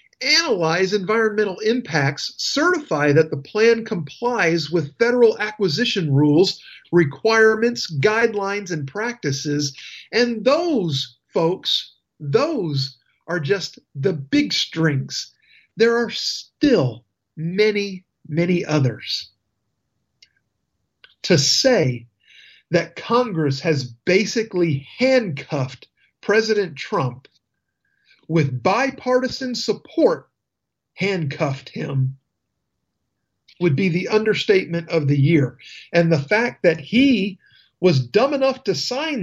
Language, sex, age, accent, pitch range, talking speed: English, male, 50-69, American, 140-220 Hz, 95 wpm